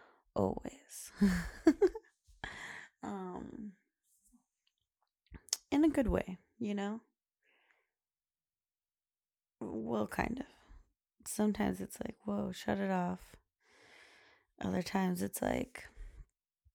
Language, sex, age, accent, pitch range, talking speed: English, female, 20-39, American, 175-225 Hz, 80 wpm